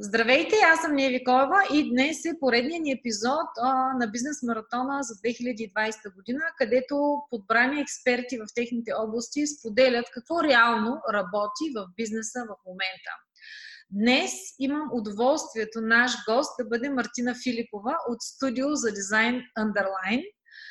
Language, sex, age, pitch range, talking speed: Bulgarian, female, 30-49, 215-275 Hz, 130 wpm